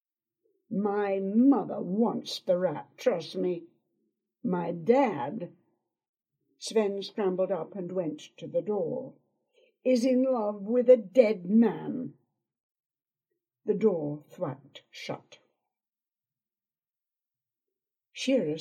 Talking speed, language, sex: 95 wpm, English, female